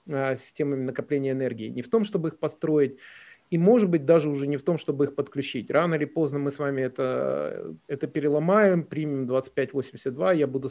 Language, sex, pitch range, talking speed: Ukrainian, male, 135-170 Hz, 185 wpm